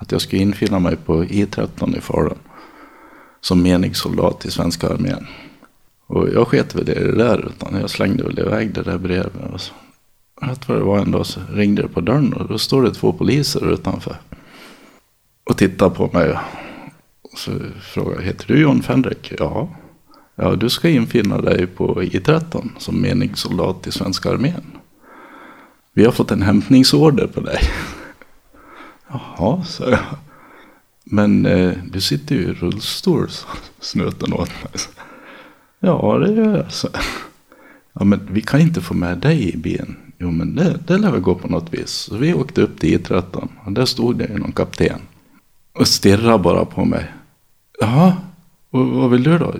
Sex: male